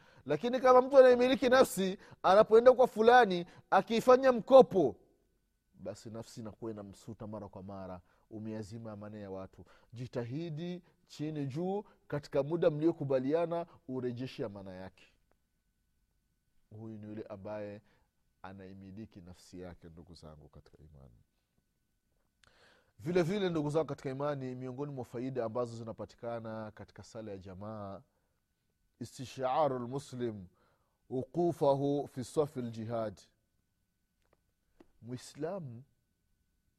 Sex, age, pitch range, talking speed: male, 30-49, 105-165 Hz, 105 wpm